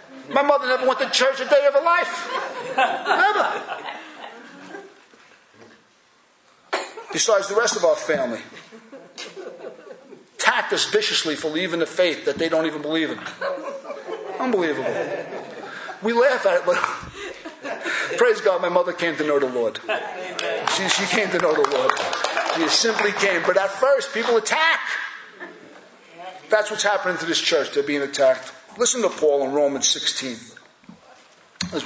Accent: American